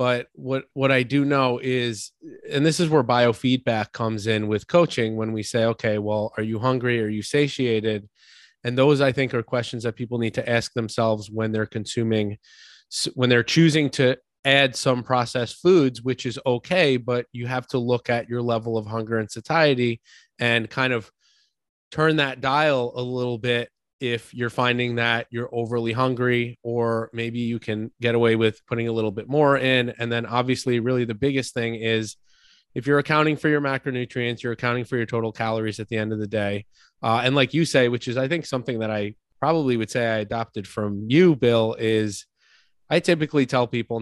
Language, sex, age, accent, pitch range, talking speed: English, male, 20-39, American, 115-135 Hz, 200 wpm